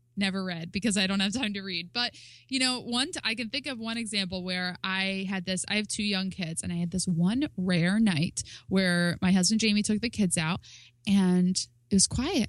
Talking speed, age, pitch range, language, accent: 225 wpm, 20-39, 185-225 Hz, English, American